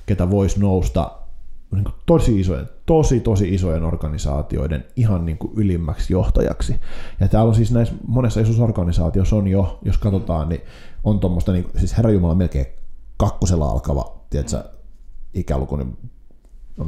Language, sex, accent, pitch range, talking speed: Finnish, male, native, 80-105 Hz, 125 wpm